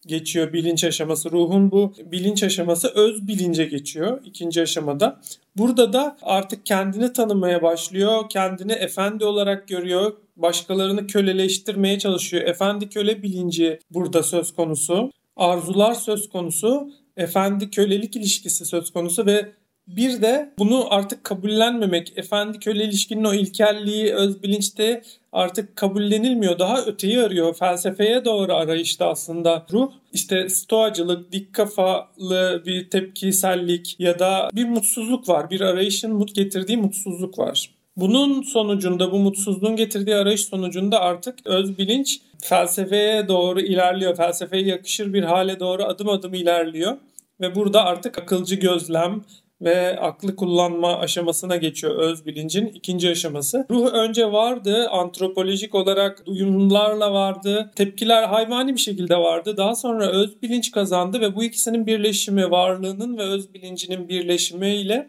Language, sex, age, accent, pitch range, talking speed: Turkish, male, 40-59, native, 180-215 Hz, 130 wpm